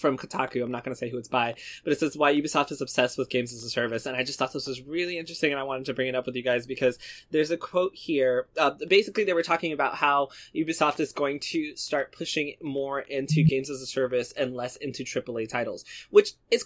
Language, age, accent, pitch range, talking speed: English, 20-39, American, 140-205 Hz, 255 wpm